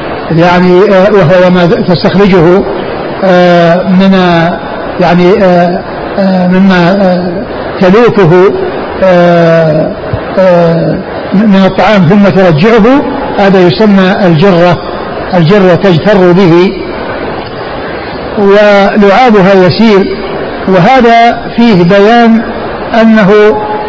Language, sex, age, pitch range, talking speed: Arabic, male, 60-79, 185-215 Hz, 70 wpm